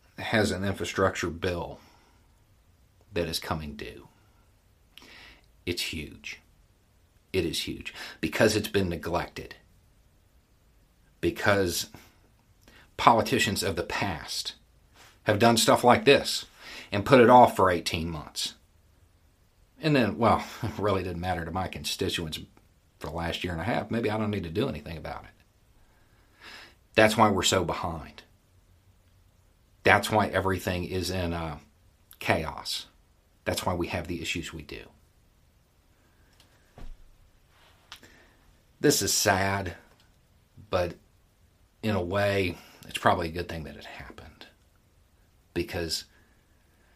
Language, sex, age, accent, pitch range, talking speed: English, male, 50-69, American, 85-100 Hz, 125 wpm